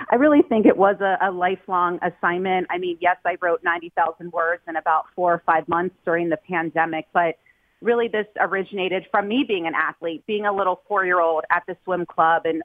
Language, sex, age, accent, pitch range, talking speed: English, female, 30-49, American, 165-190 Hz, 205 wpm